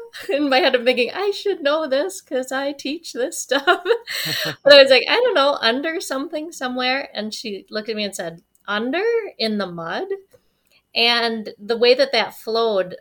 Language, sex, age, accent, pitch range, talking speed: English, female, 30-49, American, 185-240 Hz, 190 wpm